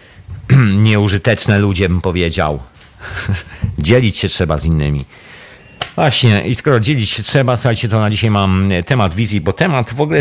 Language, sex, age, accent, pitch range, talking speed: Polish, male, 40-59, native, 90-115 Hz, 160 wpm